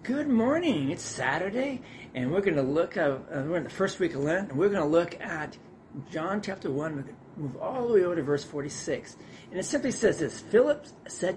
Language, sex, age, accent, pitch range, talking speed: English, male, 40-59, American, 145-195 Hz, 230 wpm